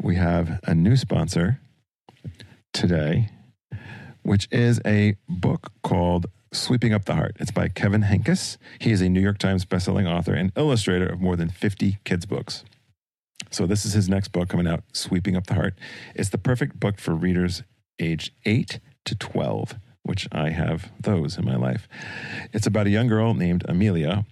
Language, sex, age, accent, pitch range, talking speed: English, male, 40-59, American, 90-110 Hz, 180 wpm